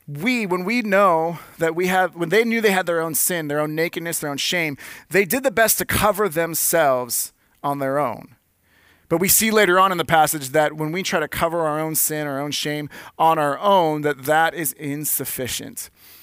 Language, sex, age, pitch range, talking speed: English, male, 30-49, 150-200 Hz, 215 wpm